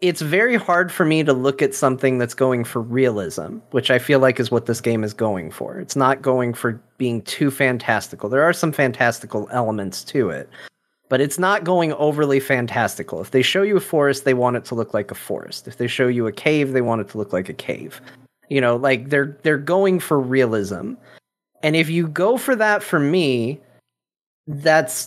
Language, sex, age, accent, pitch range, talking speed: English, male, 30-49, American, 125-155 Hz, 215 wpm